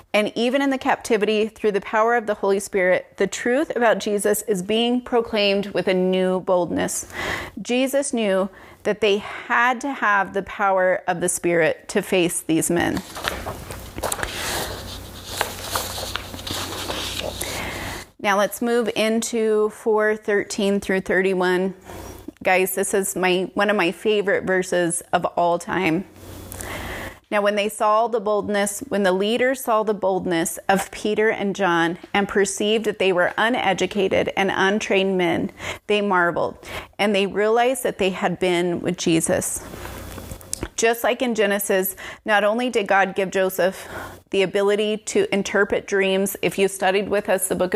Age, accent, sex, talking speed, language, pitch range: 30-49, American, female, 145 wpm, English, 180-210 Hz